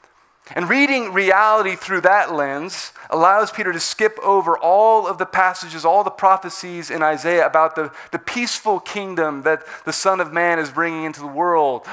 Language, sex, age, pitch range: English, male, 30-49, 160-200 Hz